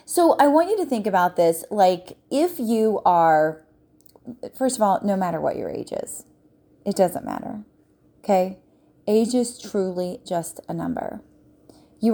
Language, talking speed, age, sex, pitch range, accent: English, 160 wpm, 30-49, female, 185-245 Hz, American